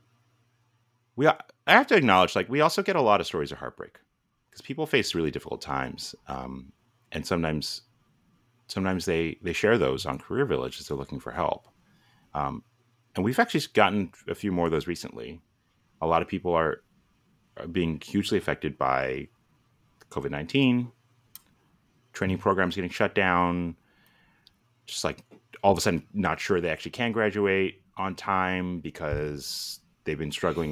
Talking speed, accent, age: 160 wpm, American, 30-49